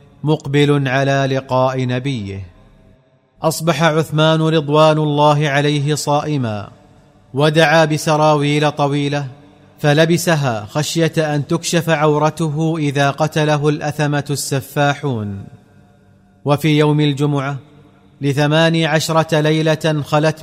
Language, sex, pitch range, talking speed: Arabic, male, 140-155 Hz, 85 wpm